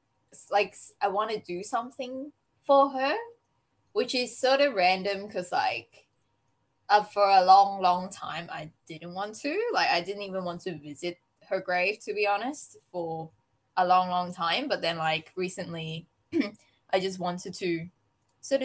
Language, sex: English, female